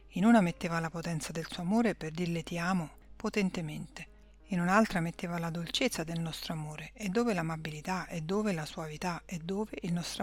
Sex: female